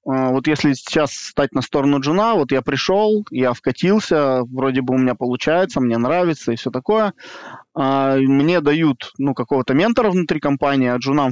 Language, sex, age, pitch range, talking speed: Russian, male, 20-39, 125-160 Hz, 165 wpm